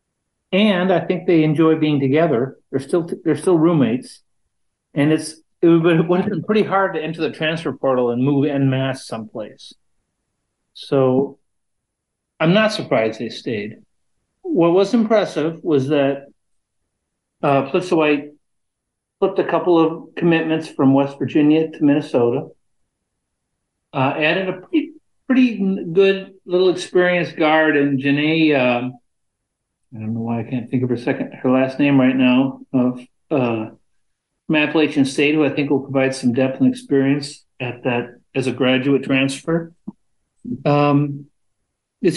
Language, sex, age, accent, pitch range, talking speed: English, male, 60-79, American, 130-170 Hz, 145 wpm